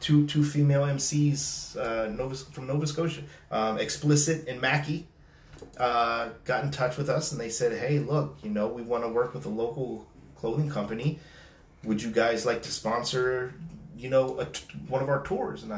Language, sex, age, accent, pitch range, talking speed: English, male, 30-49, American, 110-140 Hz, 190 wpm